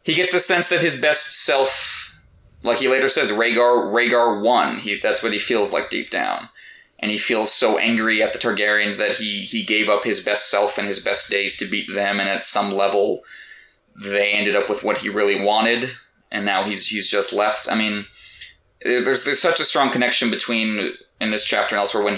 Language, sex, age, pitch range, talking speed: English, male, 20-39, 105-135 Hz, 215 wpm